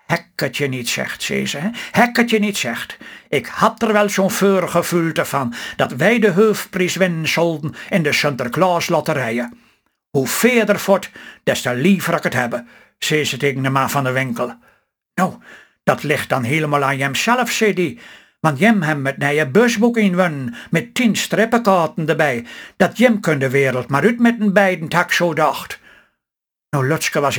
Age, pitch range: 60-79, 145-205 Hz